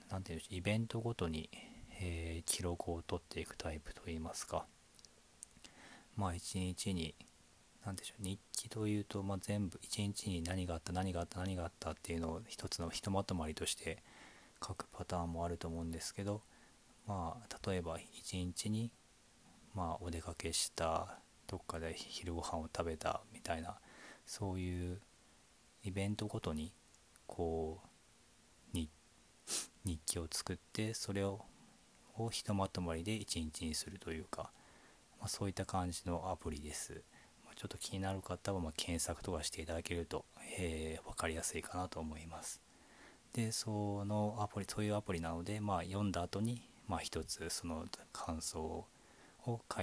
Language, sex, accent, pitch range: Japanese, male, native, 85-100 Hz